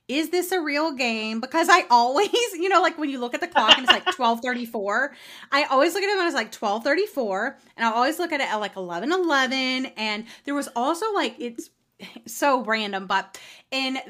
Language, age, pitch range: English, 30-49, 225-295 Hz